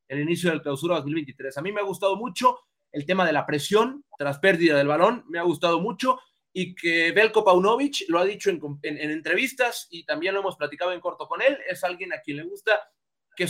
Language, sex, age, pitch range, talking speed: Spanish, male, 30-49, 160-215 Hz, 225 wpm